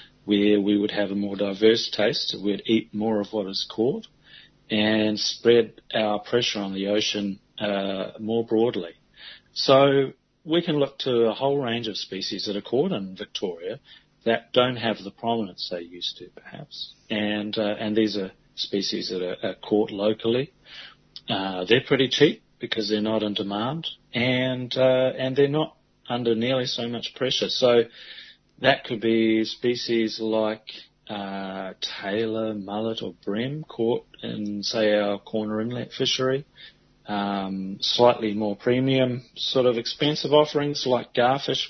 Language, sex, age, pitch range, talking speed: English, male, 40-59, 105-125 Hz, 155 wpm